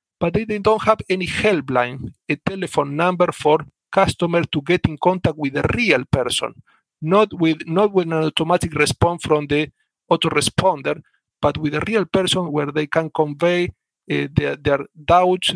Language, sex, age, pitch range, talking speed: English, male, 50-69, 145-180 Hz, 160 wpm